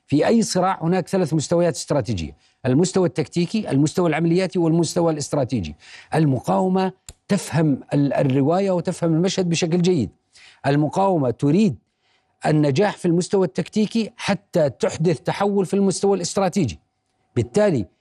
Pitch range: 145-195 Hz